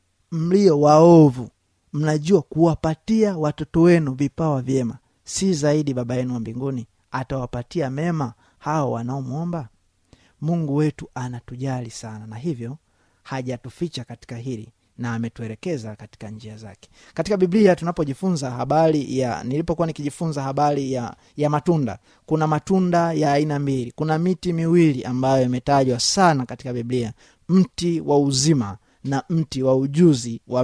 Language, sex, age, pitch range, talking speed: Swahili, male, 30-49, 120-155 Hz, 125 wpm